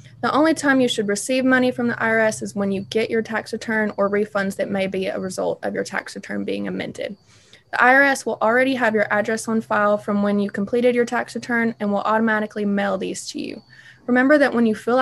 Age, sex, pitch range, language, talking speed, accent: 20-39, female, 205-245 Hz, English, 230 wpm, American